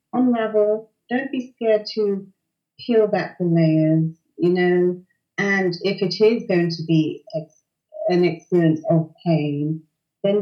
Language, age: English, 30-49